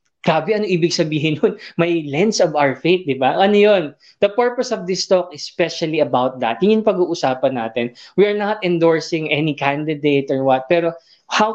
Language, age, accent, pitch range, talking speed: Filipino, 20-39, native, 155-195 Hz, 175 wpm